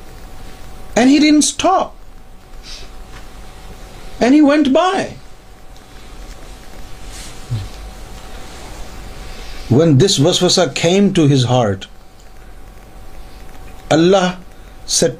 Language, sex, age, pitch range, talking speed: Urdu, male, 60-79, 110-150 Hz, 65 wpm